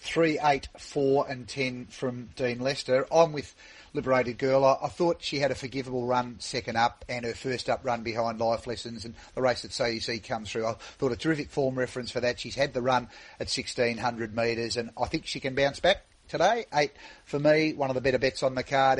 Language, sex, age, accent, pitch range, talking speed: English, male, 40-59, Australian, 125-160 Hz, 225 wpm